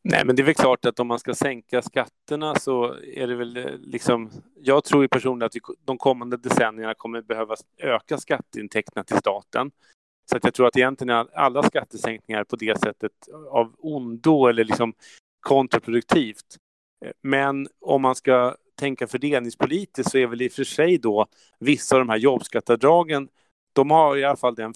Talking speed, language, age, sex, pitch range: 180 wpm, Swedish, 30-49, male, 115-140 Hz